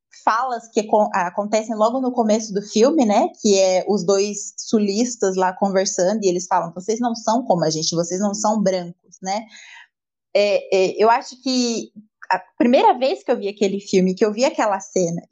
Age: 20-39